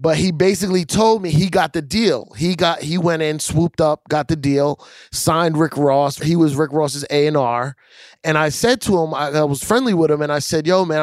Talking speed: 235 wpm